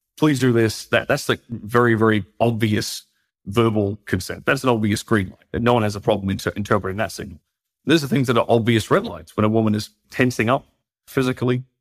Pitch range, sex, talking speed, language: 100-115 Hz, male, 220 wpm, English